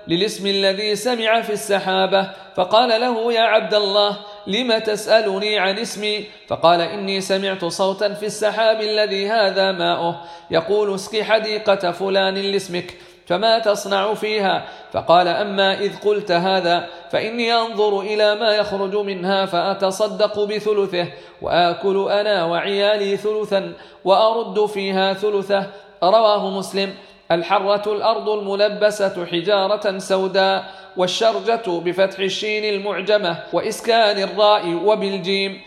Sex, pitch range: male, 195-215 Hz